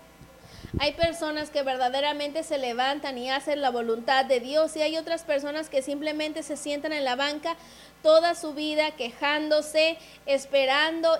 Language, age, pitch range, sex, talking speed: English, 30-49, 250-295 Hz, female, 150 wpm